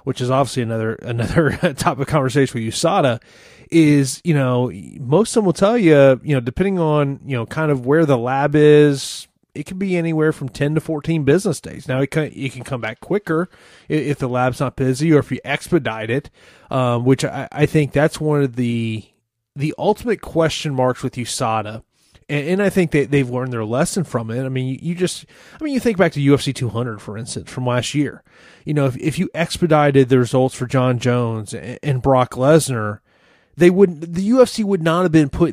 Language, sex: English, male